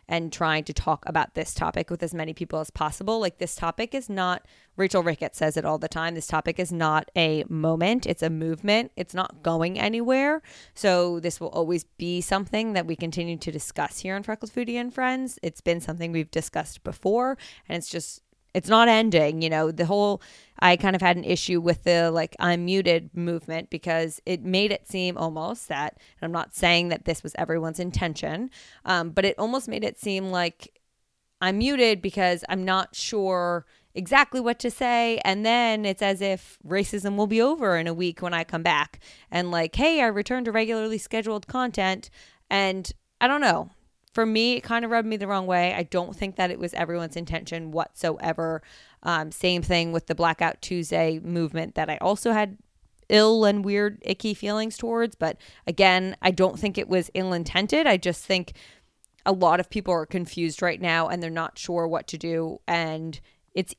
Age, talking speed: 20-39, 200 wpm